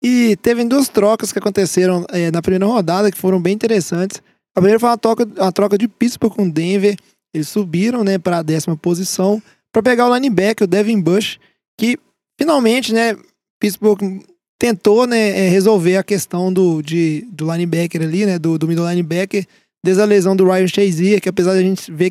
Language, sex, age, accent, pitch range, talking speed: Portuguese, male, 20-39, Brazilian, 185-225 Hz, 190 wpm